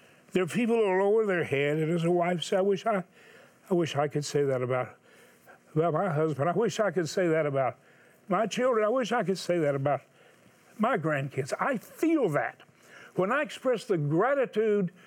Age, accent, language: 60-79, American, English